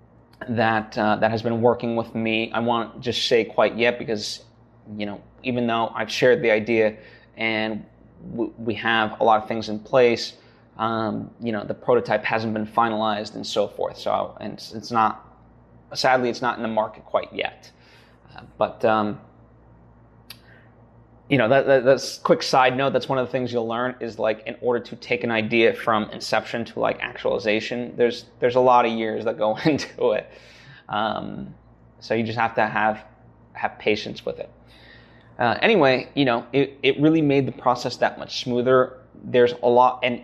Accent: American